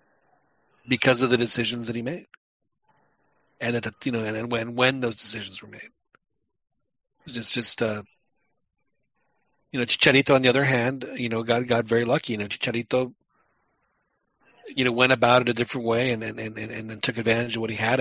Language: English